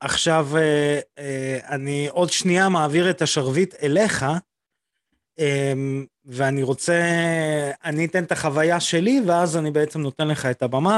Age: 30-49